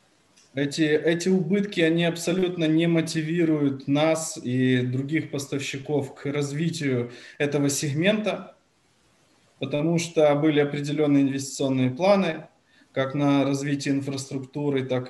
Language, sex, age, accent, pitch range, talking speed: Ukrainian, male, 20-39, native, 135-160 Hz, 105 wpm